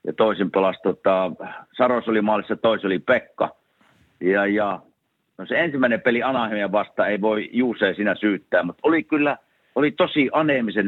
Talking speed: 155 wpm